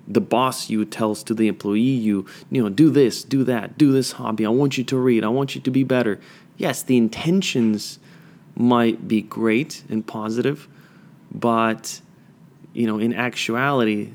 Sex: male